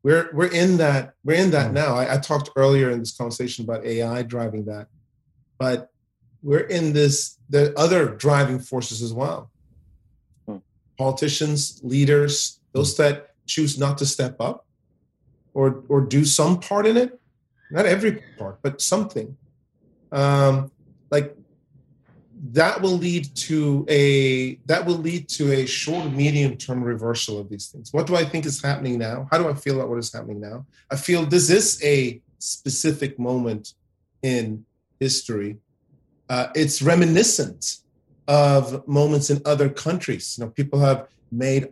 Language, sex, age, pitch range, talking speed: English, male, 30-49, 125-150 Hz, 155 wpm